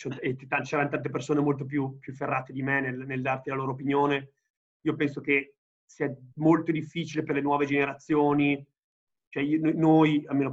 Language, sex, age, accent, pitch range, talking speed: Italian, male, 30-49, native, 135-155 Hz, 165 wpm